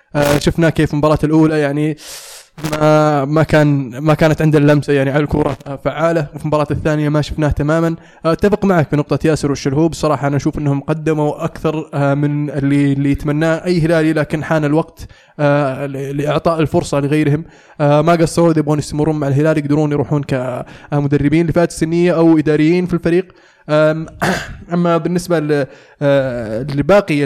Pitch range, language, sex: 145-165 Hz, Arabic, male